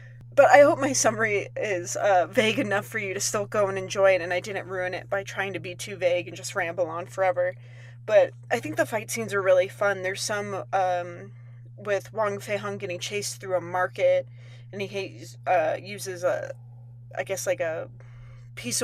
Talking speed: 205 wpm